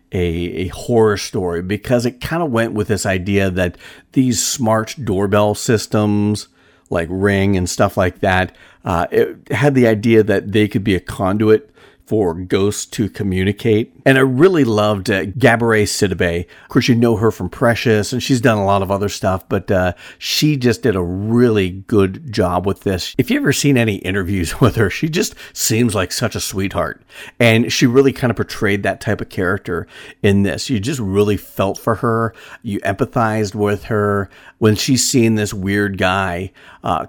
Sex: male